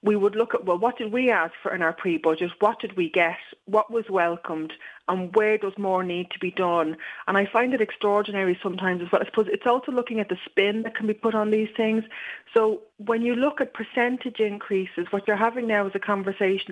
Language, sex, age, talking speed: English, female, 30-49, 235 wpm